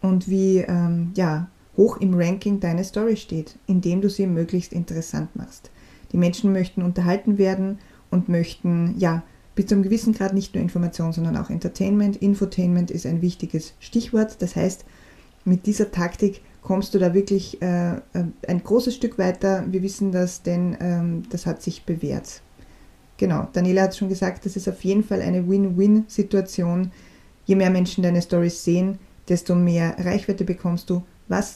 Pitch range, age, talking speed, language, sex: 175-195 Hz, 20-39, 165 wpm, German, female